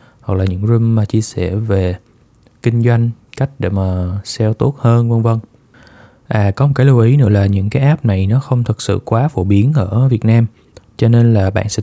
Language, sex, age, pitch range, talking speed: Vietnamese, male, 20-39, 100-130 Hz, 230 wpm